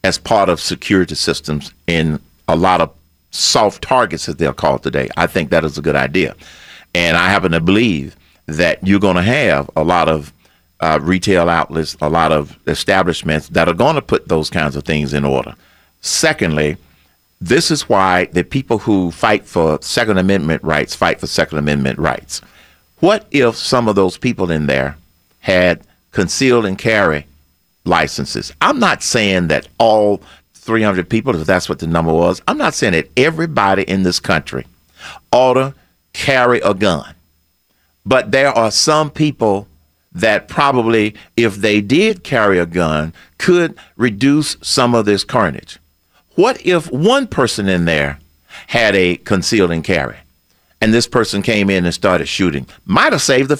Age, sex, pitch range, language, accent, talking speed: 50-69, male, 80-115 Hz, English, American, 170 wpm